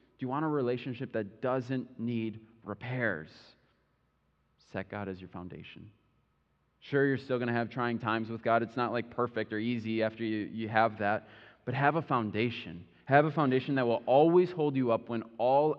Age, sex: 20-39, male